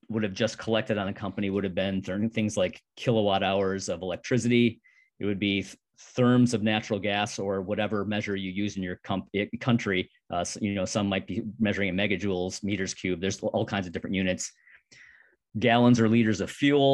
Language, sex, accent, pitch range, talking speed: English, male, American, 100-120 Hz, 200 wpm